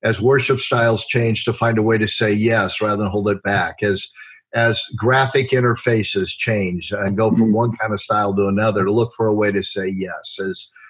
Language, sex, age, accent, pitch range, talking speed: English, male, 50-69, American, 105-125 Hz, 215 wpm